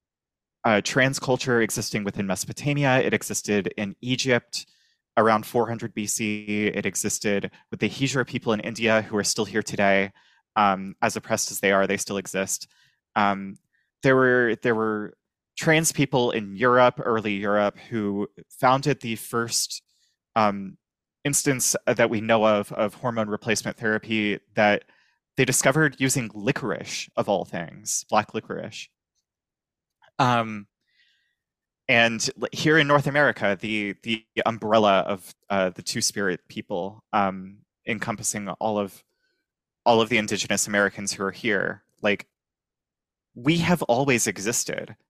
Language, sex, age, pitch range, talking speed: English, male, 20-39, 105-125 Hz, 135 wpm